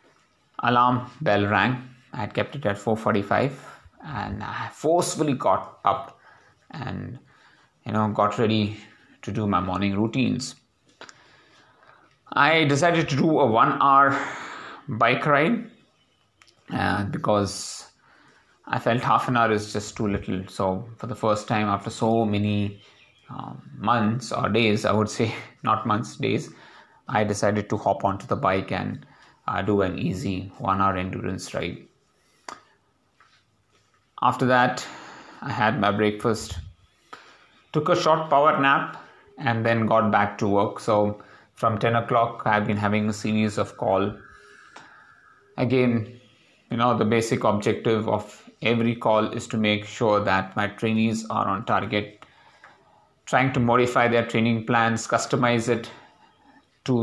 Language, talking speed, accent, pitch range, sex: English, 140 wpm, Indian, 105-125 Hz, male